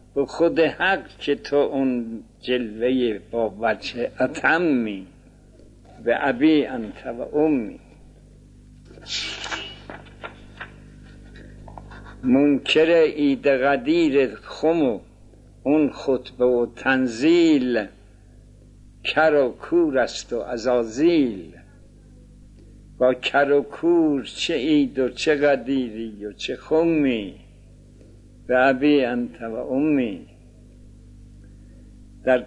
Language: Persian